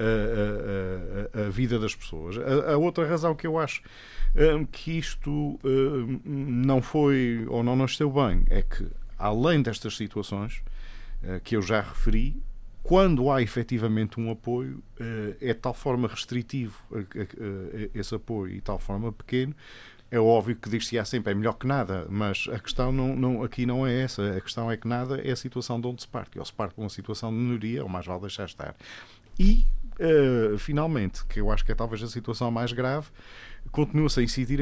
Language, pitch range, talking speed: Portuguese, 105-130 Hz, 195 wpm